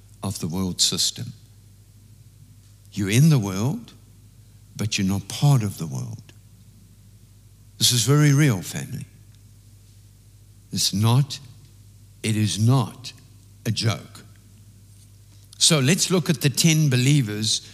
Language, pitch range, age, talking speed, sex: English, 105-120 Hz, 60-79, 115 wpm, male